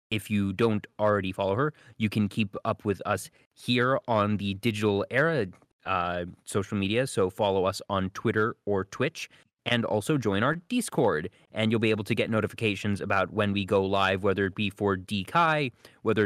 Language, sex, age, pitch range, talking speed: English, male, 30-49, 100-125 Hz, 185 wpm